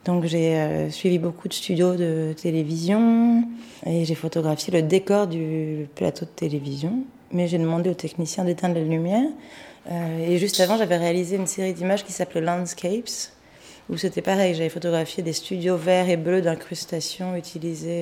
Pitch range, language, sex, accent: 160-190 Hz, French, female, French